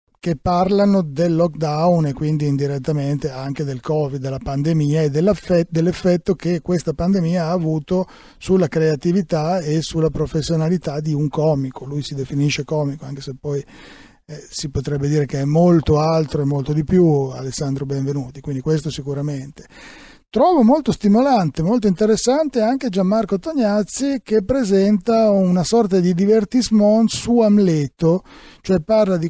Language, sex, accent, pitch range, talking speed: Italian, male, native, 150-185 Hz, 145 wpm